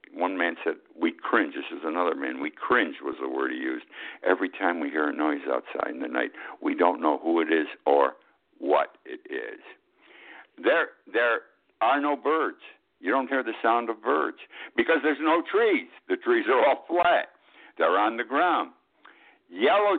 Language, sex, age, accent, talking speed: English, male, 60-79, American, 185 wpm